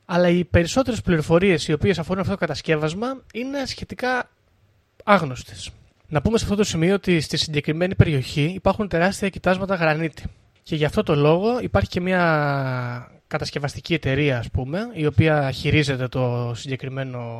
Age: 20-39